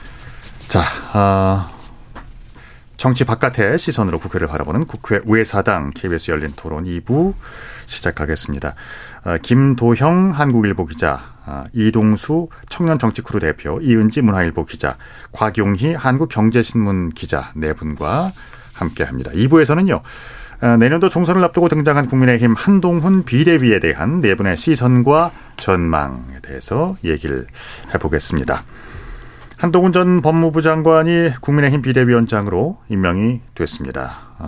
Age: 40-59